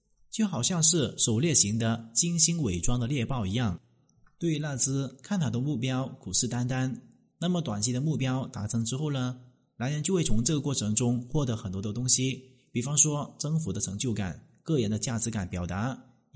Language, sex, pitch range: Chinese, male, 115-160 Hz